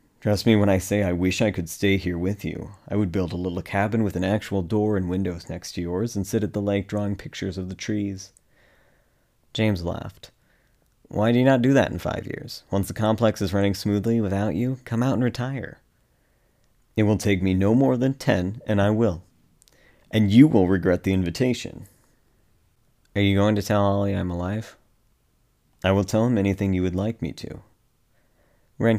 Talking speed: 200 wpm